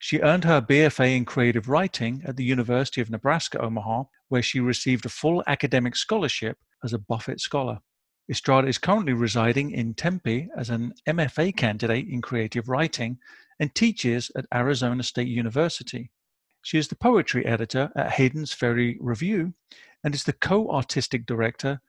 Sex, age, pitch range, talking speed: male, 40-59, 120-150 Hz, 155 wpm